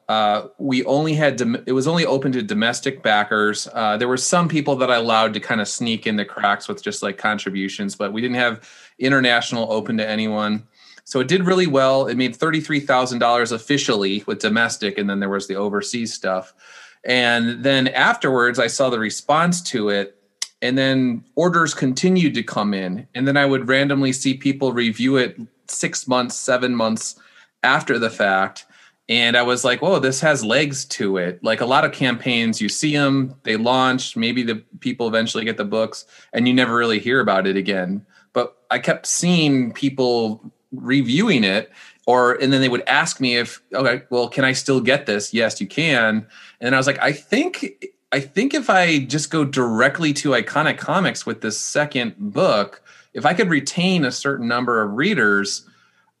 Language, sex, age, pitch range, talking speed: English, male, 30-49, 110-140 Hz, 190 wpm